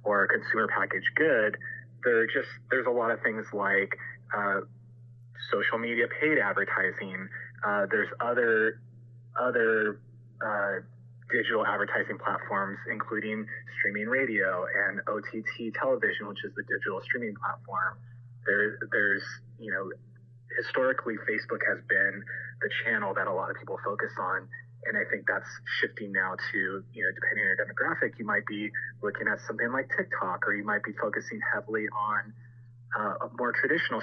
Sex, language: male, English